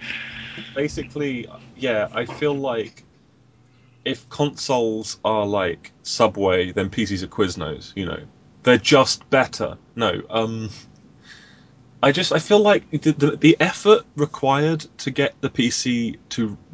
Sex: male